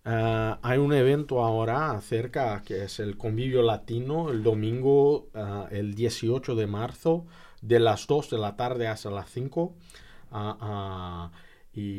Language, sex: English, male